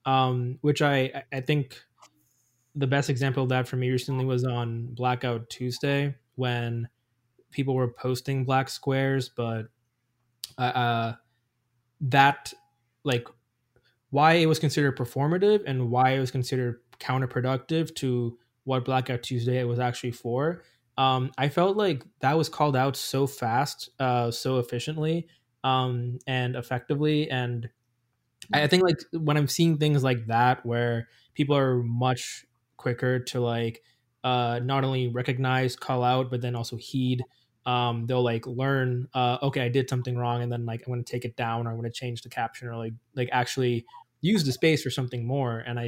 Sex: male